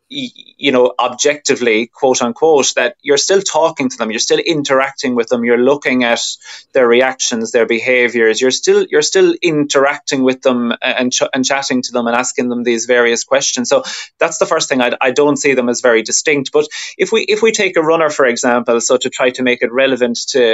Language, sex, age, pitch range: English, male, 20-39, 120-150 Hz